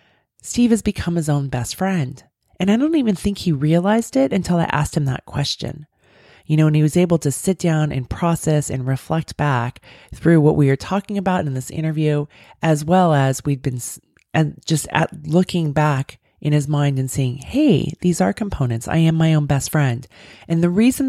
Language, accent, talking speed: English, American, 205 wpm